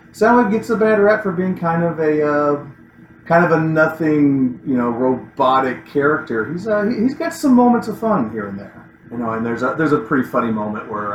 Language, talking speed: English, 220 wpm